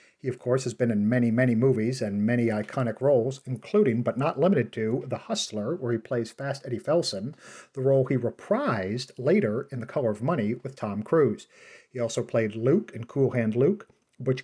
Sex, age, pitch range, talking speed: male, 50-69, 115-140 Hz, 200 wpm